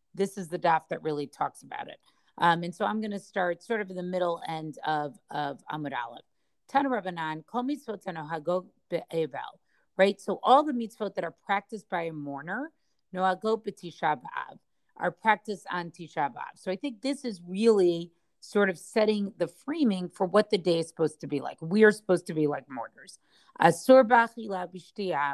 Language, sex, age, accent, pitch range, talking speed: English, female, 40-59, American, 165-200 Hz, 175 wpm